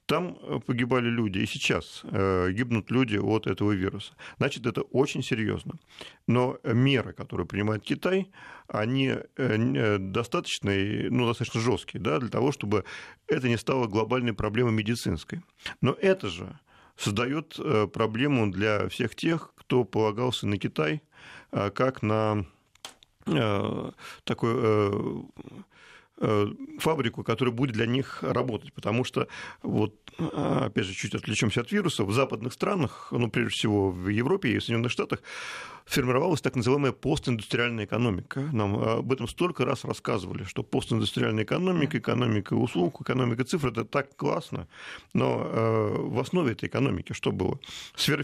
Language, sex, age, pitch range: Russian, male, 40-59, 110-135 Hz